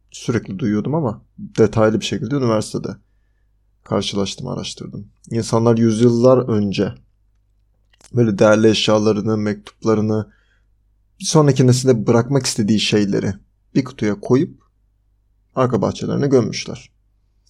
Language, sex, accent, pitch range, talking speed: Turkish, male, native, 100-125 Hz, 95 wpm